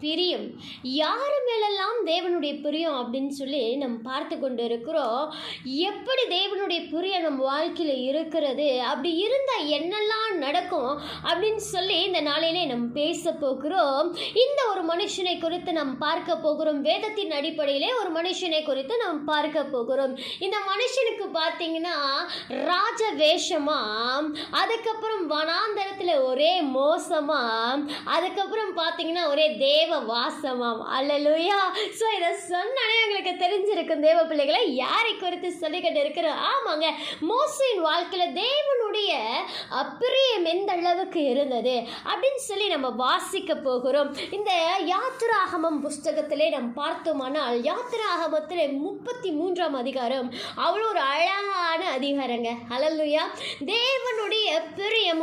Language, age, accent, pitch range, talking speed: Tamil, 20-39, native, 295-390 Hz, 70 wpm